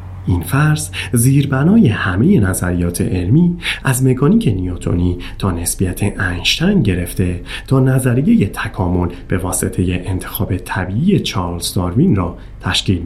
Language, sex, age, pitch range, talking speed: Persian, male, 30-49, 90-130 Hz, 110 wpm